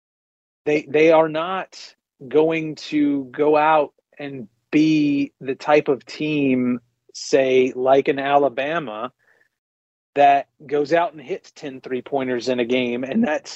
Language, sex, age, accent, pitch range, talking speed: English, male, 30-49, American, 125-150 Hz, 135 wpm